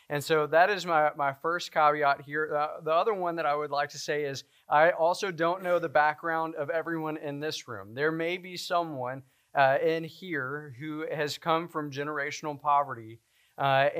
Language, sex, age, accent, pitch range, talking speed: English, male, 20-39, American, 140-165 Hz, 195 wpm